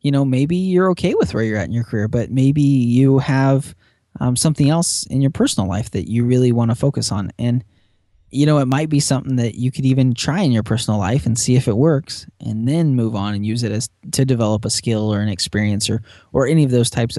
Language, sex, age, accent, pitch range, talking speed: English, male, 20-39, American, 110-140 Hz, 250 wpm